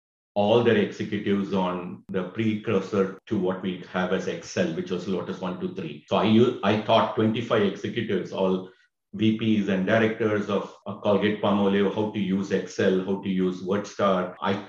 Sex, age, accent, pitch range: male, 50-69, Indian, 95-110 Hz